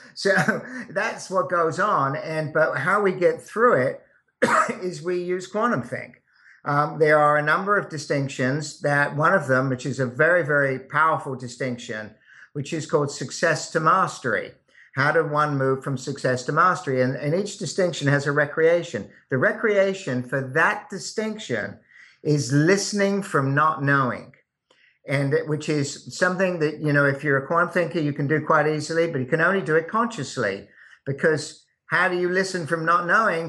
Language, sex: English, male